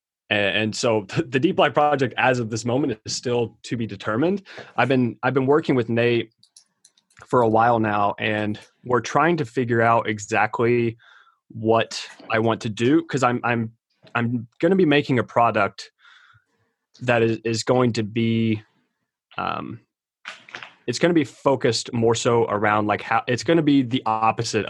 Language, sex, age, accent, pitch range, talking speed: English, male, 20-39, American, 105-125 Hz, 170 wpm